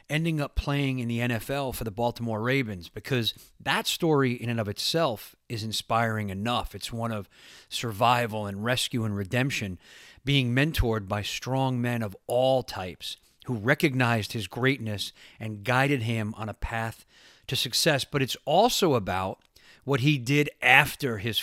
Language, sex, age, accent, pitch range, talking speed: English, male, 40-59, American, 110-135 Hz, 160 wpm